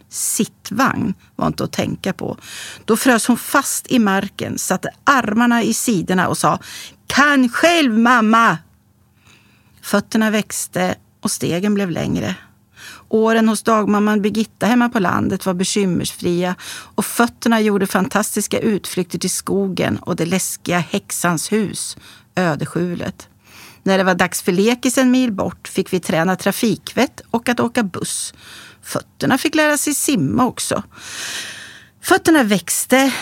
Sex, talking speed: female, 135 wpm